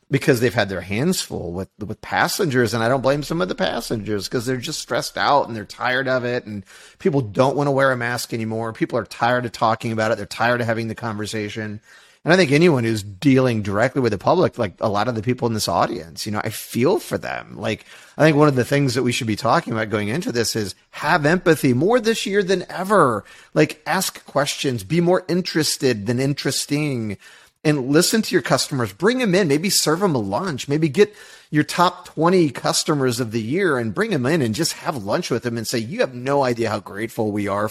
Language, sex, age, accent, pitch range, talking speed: English, male, 30-49, American, 115-160 Hz, 235 wpm